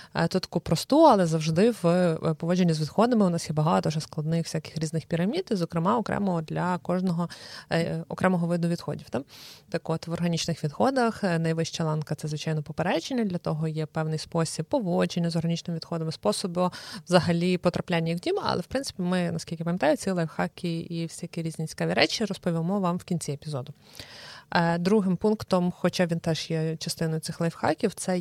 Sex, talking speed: female, 175 wpm